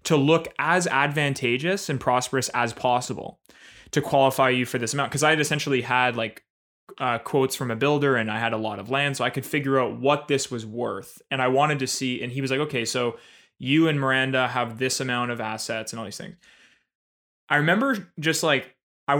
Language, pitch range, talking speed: English, 120-150 Hz, 215 wpm